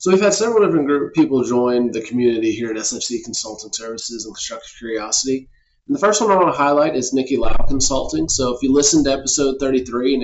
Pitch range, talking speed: 115-145 Hz, 210 wpm